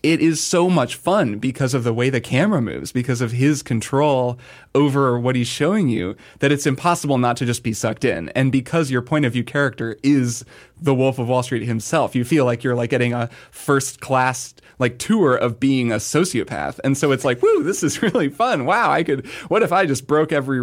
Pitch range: 120-145 Hz